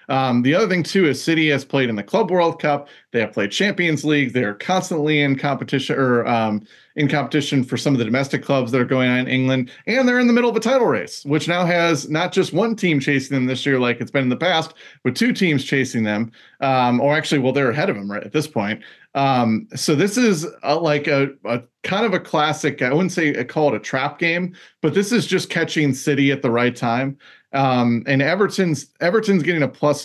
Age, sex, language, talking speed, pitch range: 30-49, male, English, 240 wpm, 125-155 Hz